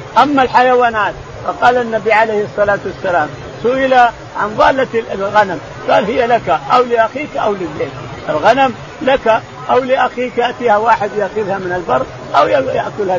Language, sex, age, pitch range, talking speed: Arabic, male, 50-69, 180-230 Hz, 130 wpm